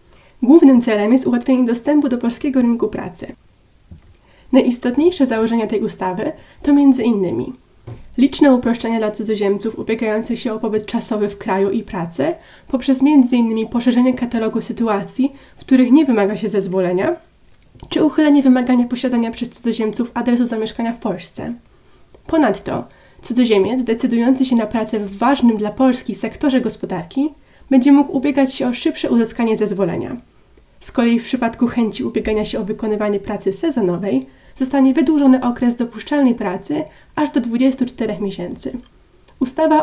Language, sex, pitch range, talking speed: Polish, female, 215-265 Hz, 135 wpm